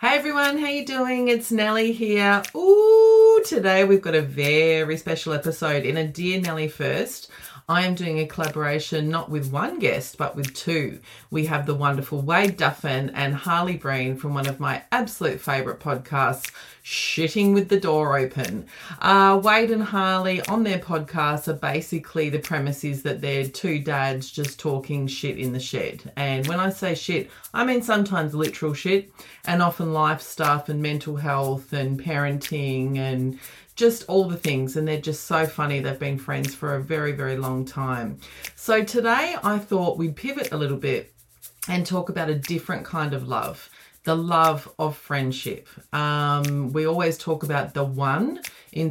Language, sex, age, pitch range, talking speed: English, female, 30-49, 140-180 Hz, 175 wpm